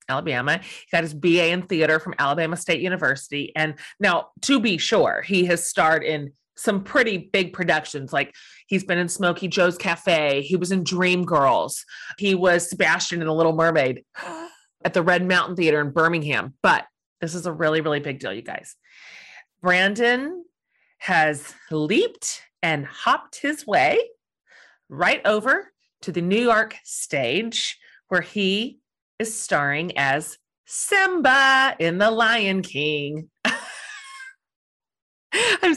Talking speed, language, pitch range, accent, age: 145 wpm, English, 165-225 Hz, American, 30-49